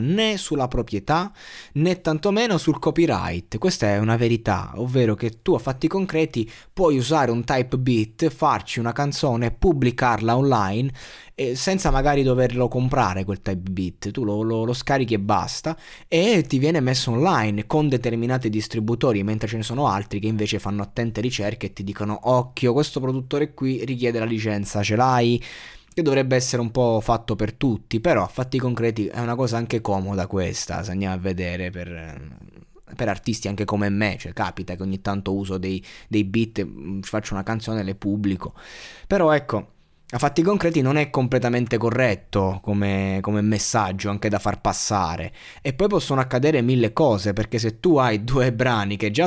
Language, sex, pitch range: Italian, male, 100-130 Hz